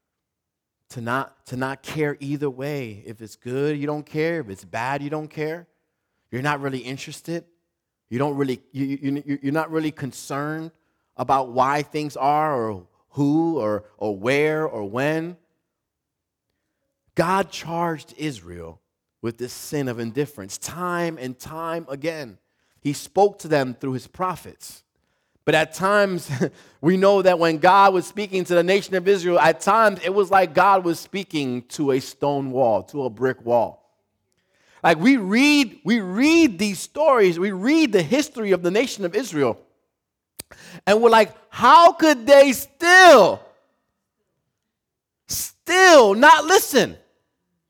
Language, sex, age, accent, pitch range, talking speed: English, male, 30-49, American, 135-195 Hz, 150 wpm